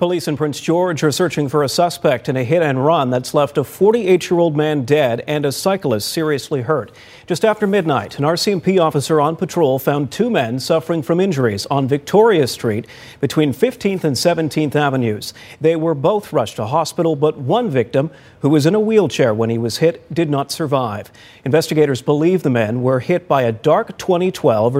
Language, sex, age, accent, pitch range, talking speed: English, male, 40-59, American, 135-175 Hz, 185 wpm